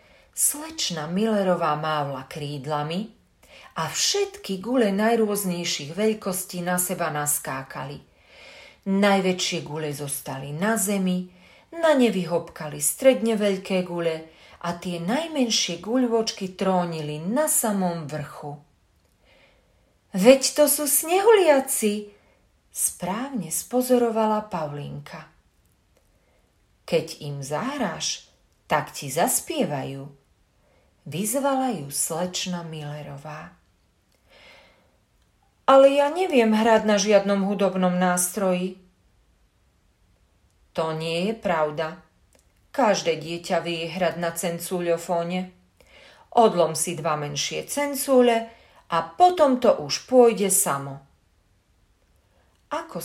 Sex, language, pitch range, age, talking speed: female, Slovak, 145-215 Hz, 40-59, 85 wpm